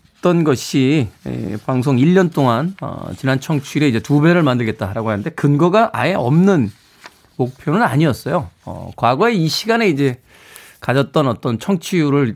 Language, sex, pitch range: Korean, male, 115-170 Hz